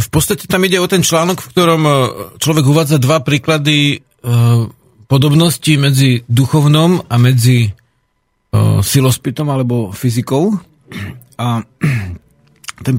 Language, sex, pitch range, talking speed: Slovak, male, 115-135 Hz, 115 wpm